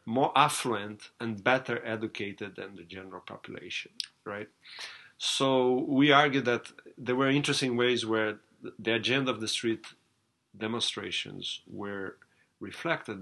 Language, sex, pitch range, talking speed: English, male, 105-130 Hz, 125 wpm